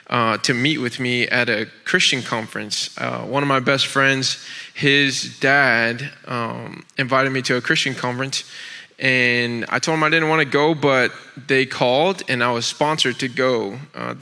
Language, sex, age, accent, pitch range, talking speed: English, male, 20-39, American, 135-165 Hz, 180 wpm